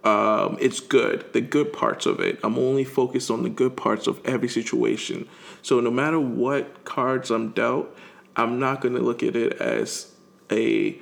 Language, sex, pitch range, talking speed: English, male, 125-180 Hz, 185 wpm